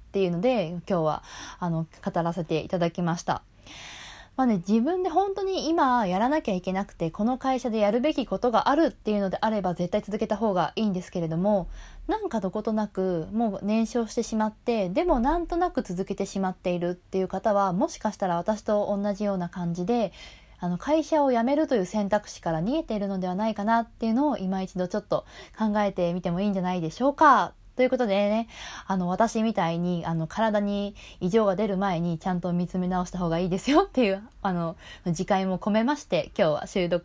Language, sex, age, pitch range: Japanese, female, 20-39, 185-245 Hz